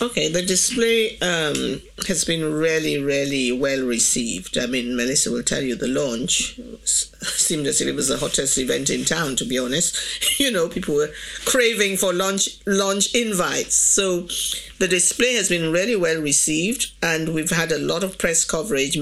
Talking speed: 170 wpm